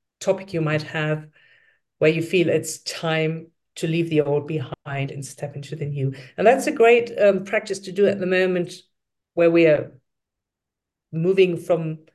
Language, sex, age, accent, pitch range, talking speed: English, female, 50-69, German, 155-195 Hz, 175 wpm